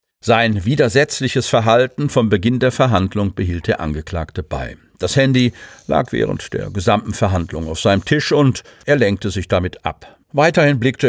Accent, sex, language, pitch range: German, male, German, 100-130 Hz